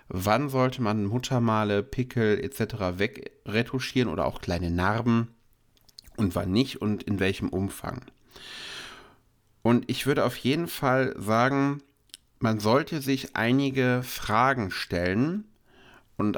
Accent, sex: German, male